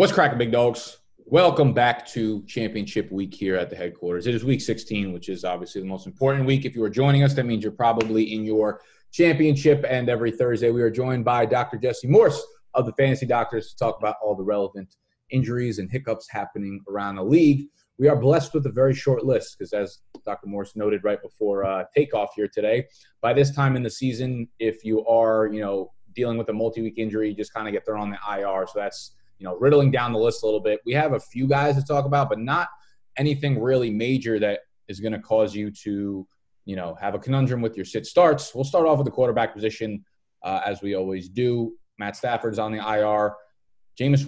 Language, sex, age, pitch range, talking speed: English, male, 20-39, 105-135 Hz, 220 wpm